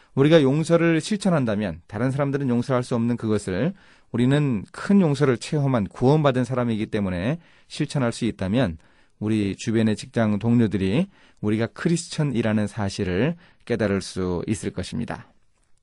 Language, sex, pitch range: Korean, male, 100-140 Hz